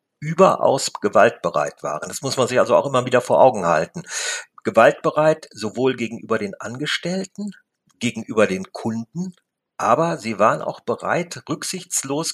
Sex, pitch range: male, 115-155 Hz